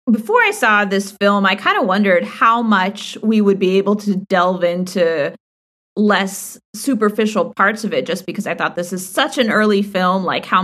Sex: female